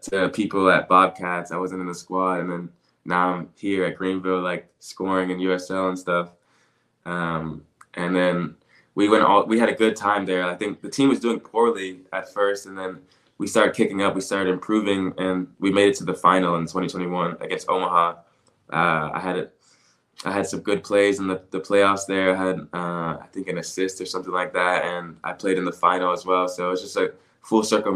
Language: English